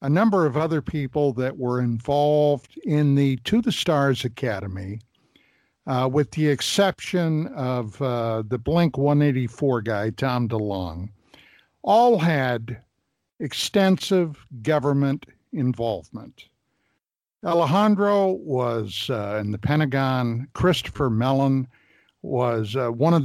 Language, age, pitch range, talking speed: English, 60-79, 120-160 Hz, 110 wpm